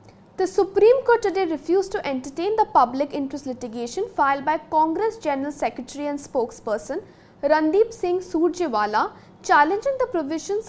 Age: 50-69